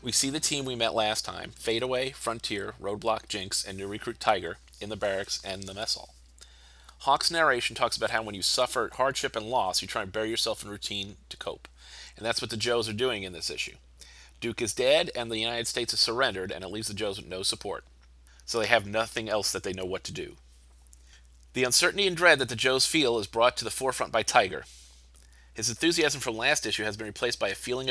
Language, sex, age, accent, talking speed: English, male, 30-49, American, 230 wpm